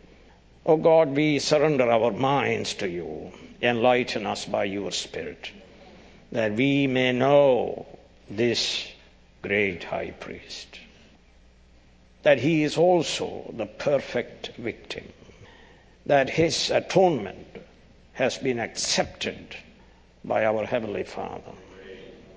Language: English